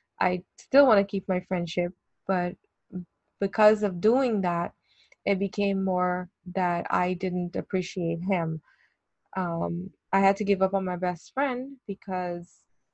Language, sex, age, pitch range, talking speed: English, female, 20-39, 180-205 Hz, 145 wpm